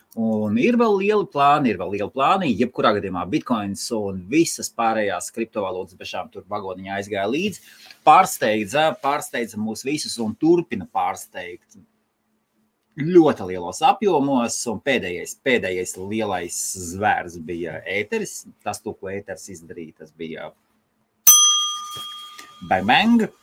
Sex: male